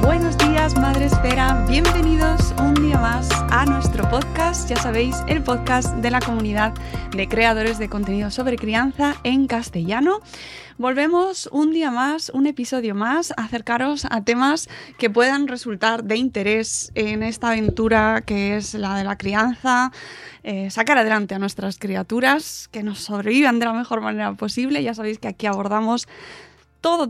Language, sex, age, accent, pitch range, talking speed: Spanish, female, 20-39, Spanish, 215-255 Hz, 155 wpm